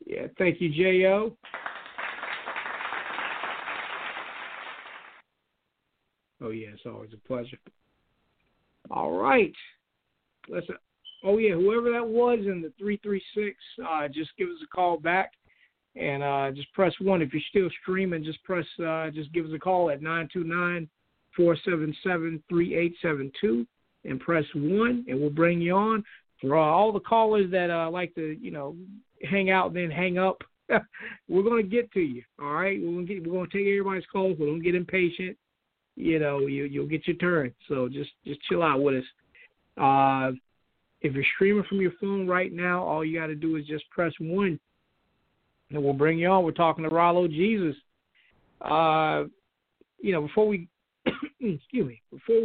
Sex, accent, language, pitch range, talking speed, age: male, American, English, 150-190 Hz, 160 wpm, 50-69